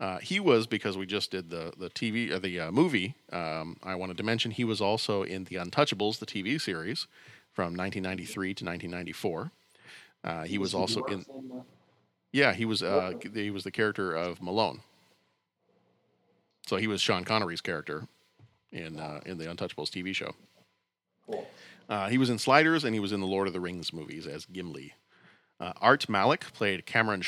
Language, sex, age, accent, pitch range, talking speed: English, male, 40-59, American, 95-115 Hz, 185 wpm